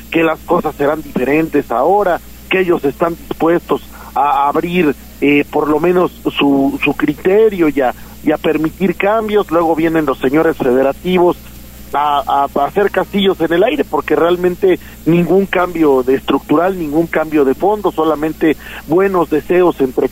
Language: Spanish